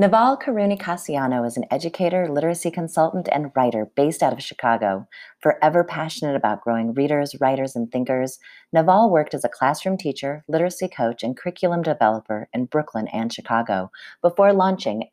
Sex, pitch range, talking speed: female, 125-180 Hz, 150 wpm